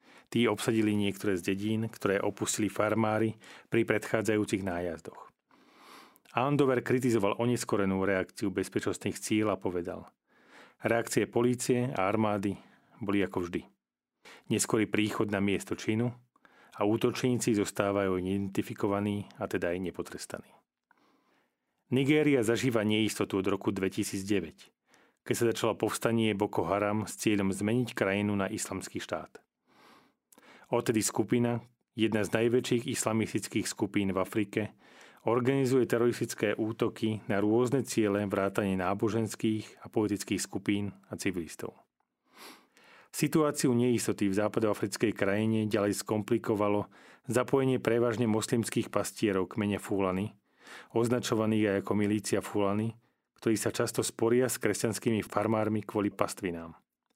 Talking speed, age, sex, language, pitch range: 110 wpm, 40-59, male, Slovak, 100-115 Hz